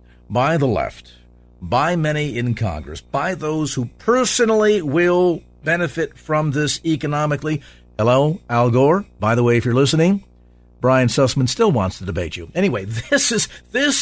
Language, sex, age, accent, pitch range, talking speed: English, male, 50-69, American, 110-160 Hz, 155 wpm